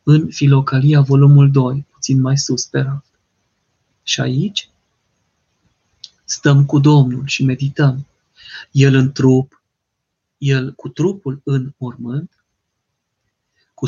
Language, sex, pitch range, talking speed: Romanian, male, 130-150 Hz, 110 wpm